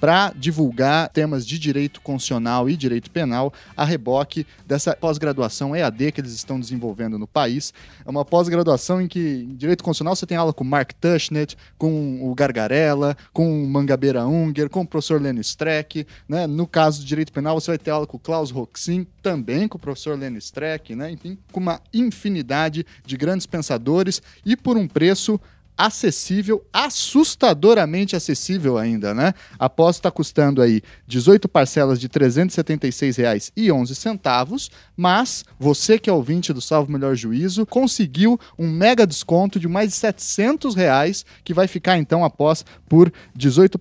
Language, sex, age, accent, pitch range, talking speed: Portuguese, male, 20-39, Brazilian, 135-180 Hz, 160 wpm